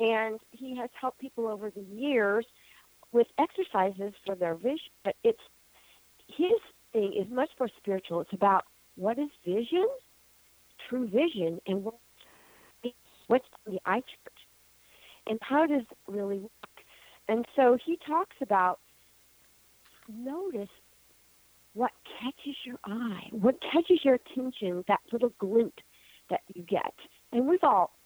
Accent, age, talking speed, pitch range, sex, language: American, 50-69, 135 wpm, 175-255 Hz, female, English